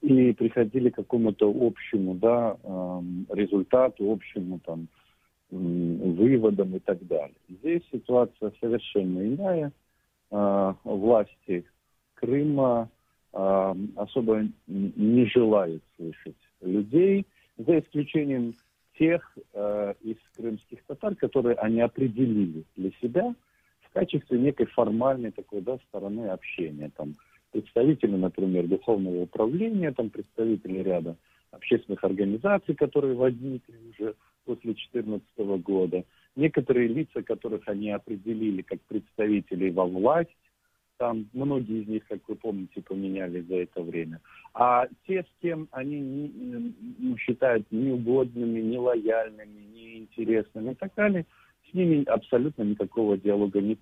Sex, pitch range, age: male, 100-130 Hz, 50-69